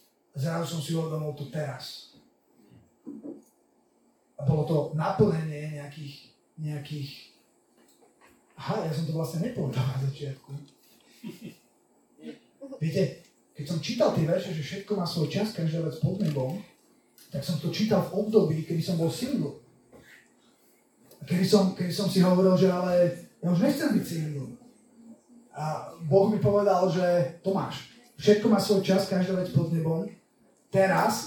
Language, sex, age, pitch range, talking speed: Slovak, male, 30-49, 160-195 Hz, 140 wpm